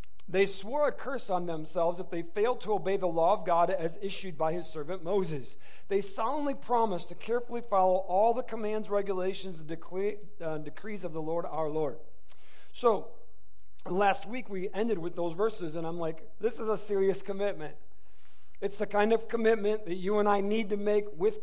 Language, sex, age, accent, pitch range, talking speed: English, male, 50-69, American, 150-205 Hz, 190 wpm